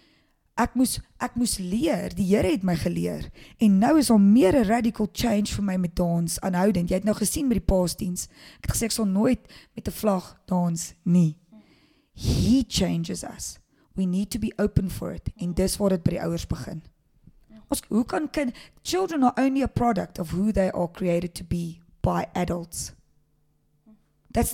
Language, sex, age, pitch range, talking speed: English, female, 20-39, 175-230 Hz, 190 wpm